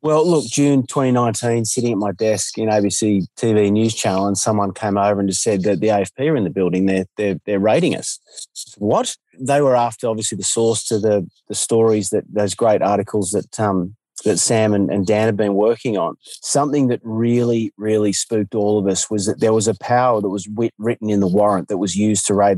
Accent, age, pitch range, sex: Australian, 30-49, 100-115 Hz, male